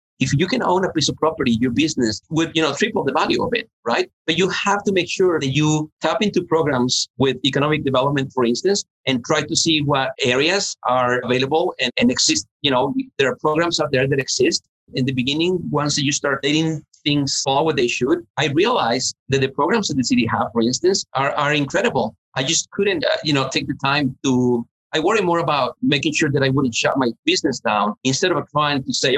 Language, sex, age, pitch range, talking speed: English, male, 50-69, 130-160 Hz, 225 wpm